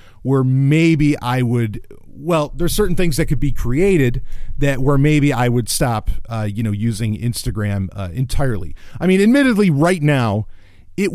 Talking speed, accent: 165 wpm, American